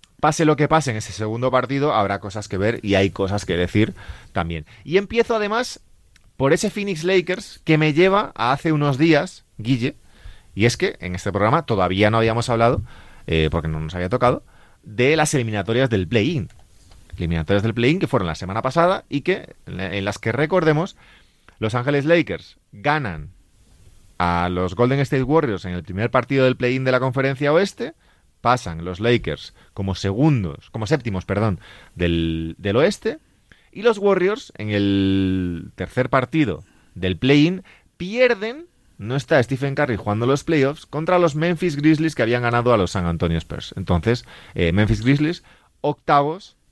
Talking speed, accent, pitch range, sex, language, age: 170 wpm, Spanish, 95-145 Hz, male, Spanish, 30-49